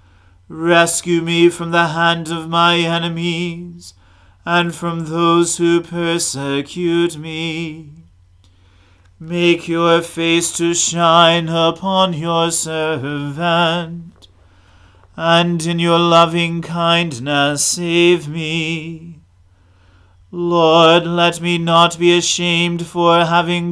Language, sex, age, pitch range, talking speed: English, male, 40-59, 155-170 Hz, 95 wpm